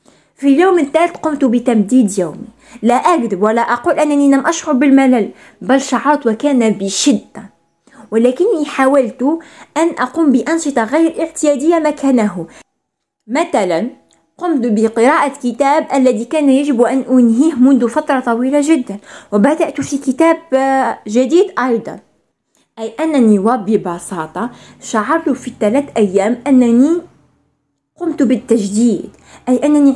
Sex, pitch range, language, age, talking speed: female, 240-295 Hz, Arabic, 20-39, 110 wpm